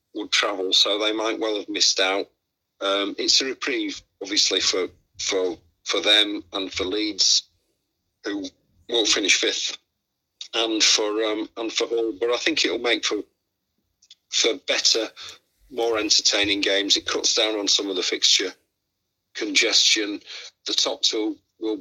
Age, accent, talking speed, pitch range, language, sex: 50-69, British, 150 wpm, 100-170 Hz, English, male